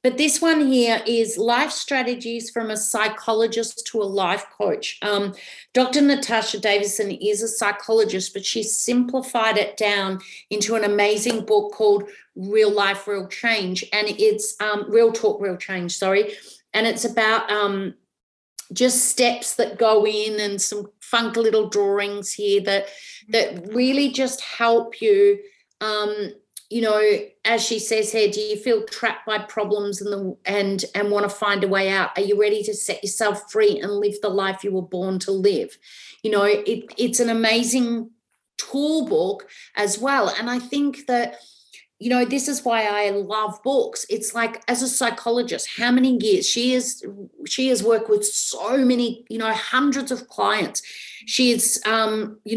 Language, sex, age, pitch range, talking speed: English, female, 40-59, 205-245 Hz, 170 wpm